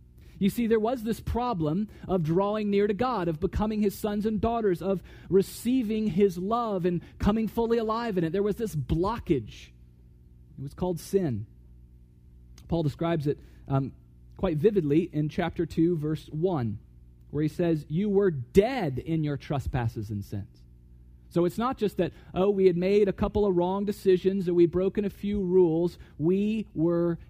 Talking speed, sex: 175 wpm, male